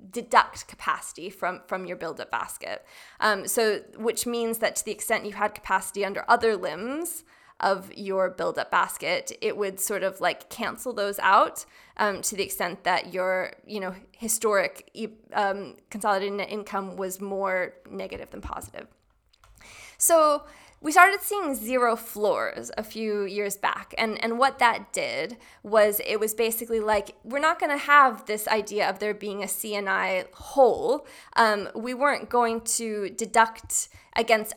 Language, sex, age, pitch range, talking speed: English, female, 20-39, 200-245 Hz, 160 wpm